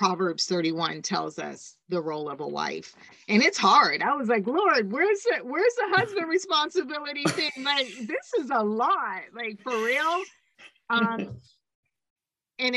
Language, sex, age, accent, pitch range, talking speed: English, female, 30-49, American, 175-235 Hz, 155 wpm